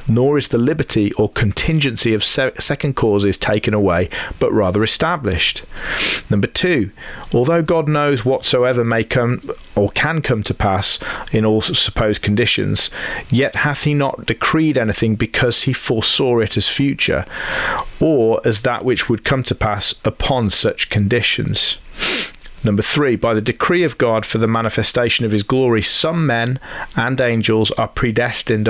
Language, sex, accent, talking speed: English, male, British, 155 wpm